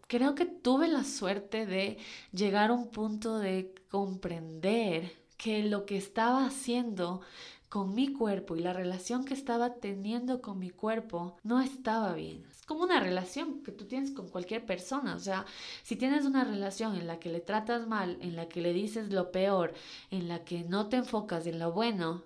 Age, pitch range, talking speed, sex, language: 20-39, 185-235 Hz, 185 wpm, female, Spanish